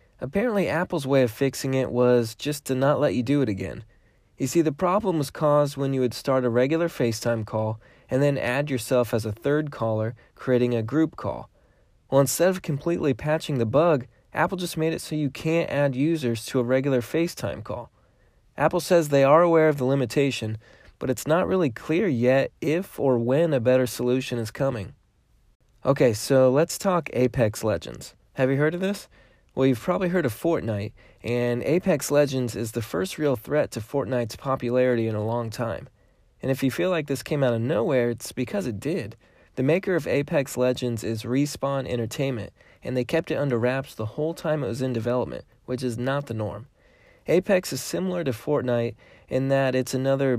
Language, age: English, 20-39